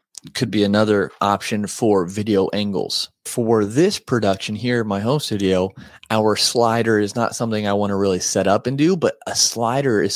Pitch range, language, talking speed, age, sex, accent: 100-120 Hz, English, 185 wpm, 30-49, male, American